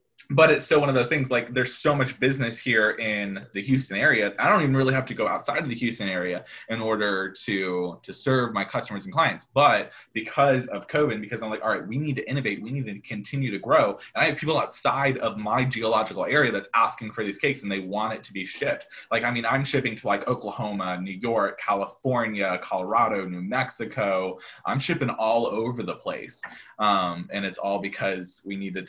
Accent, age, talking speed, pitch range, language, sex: American, 20-39, 220 wpm, 100-140 Hz, English, male